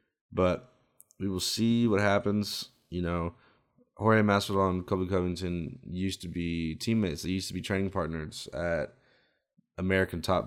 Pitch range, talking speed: 85-95 Hz, 150 wpm